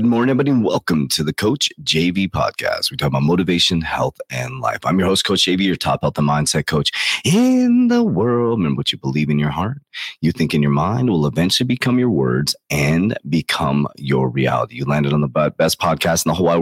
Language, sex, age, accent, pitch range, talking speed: English, male, 30-49, American, 70-95 Hz, 225 wpm